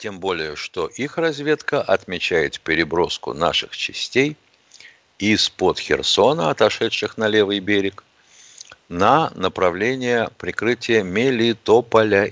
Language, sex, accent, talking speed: Russian, male, native, 95 wpm